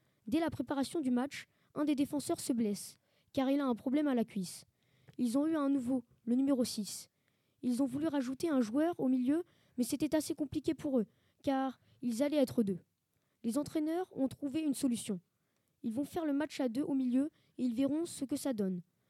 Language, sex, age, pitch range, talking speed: French, female, 20-39, 215-290 Hz, 210 wpm